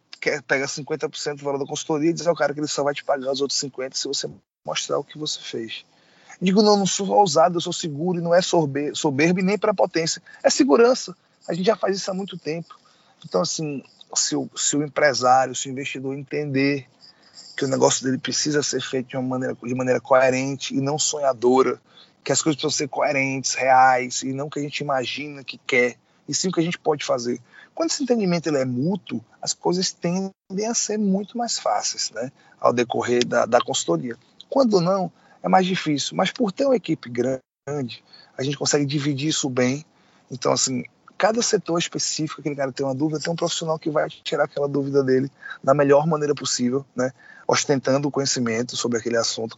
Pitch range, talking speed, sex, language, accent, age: 130-170 Hz, 205 wpm, male, Portuguese, Brazilian, 20-39